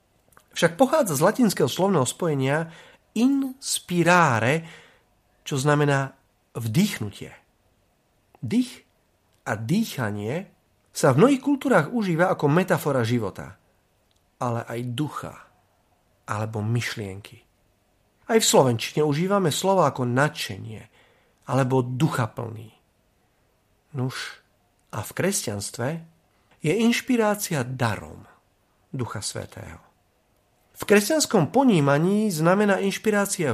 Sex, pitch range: male, 115-195 Hz